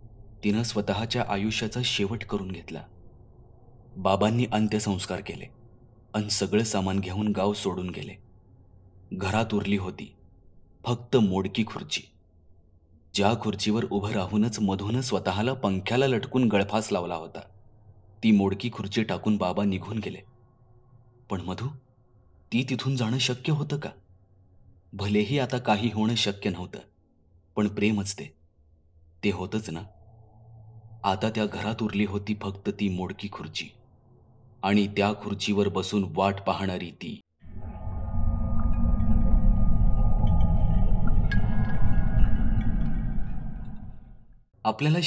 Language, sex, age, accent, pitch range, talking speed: Marathi, male, 30-49, native, 95-115 Hz, 100 wpm